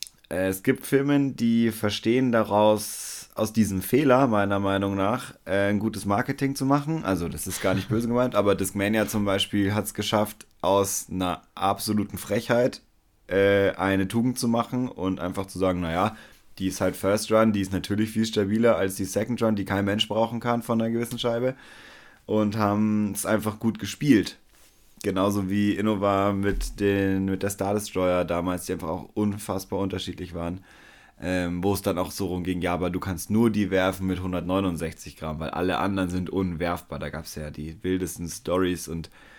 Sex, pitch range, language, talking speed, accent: male, 95-110 Hz, German, 185 wpm, German